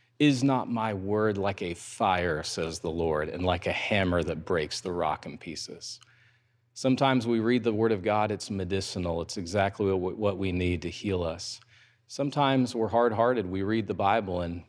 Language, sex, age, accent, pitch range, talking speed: English, male, 40-59, American, 100-125 Hz, 185 wpm